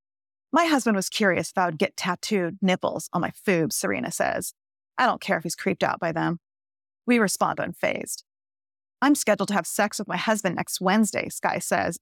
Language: English